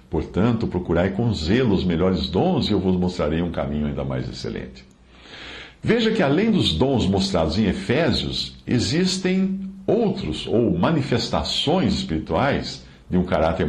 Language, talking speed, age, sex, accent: Portuguese, 140 wpm, 60-79, male, Brazilian